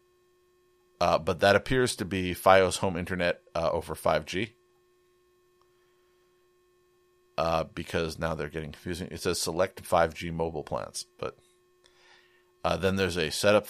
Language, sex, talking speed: English, male, 130 wpm